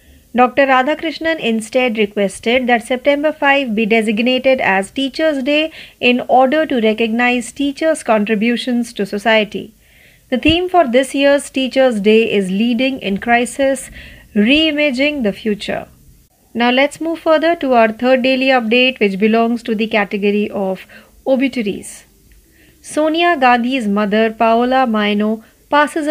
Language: Marathi